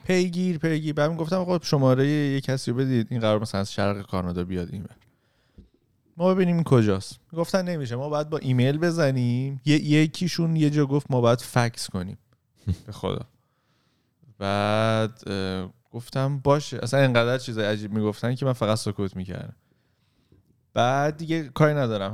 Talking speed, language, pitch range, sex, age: 150 wpm, Persian, 110-145 Hz, male, 30-49